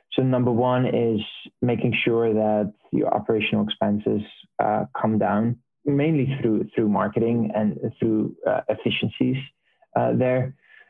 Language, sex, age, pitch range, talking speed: English, male, 20-39, 105-130 Hz, 125 wpm